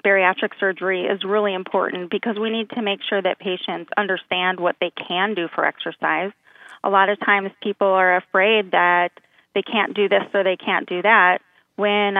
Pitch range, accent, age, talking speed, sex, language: 180-210 Hz, American, 30-49, 185 wpm, female, English